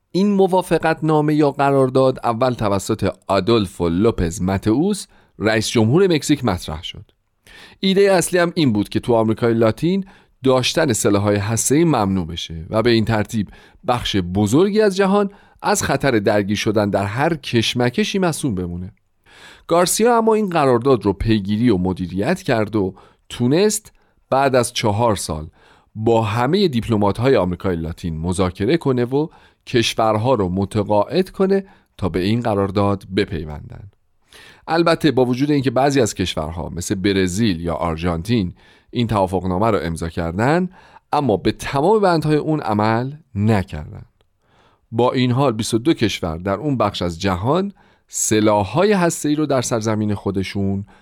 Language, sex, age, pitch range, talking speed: Persian, male, 40-59, 100-140 Hz, 140 wpm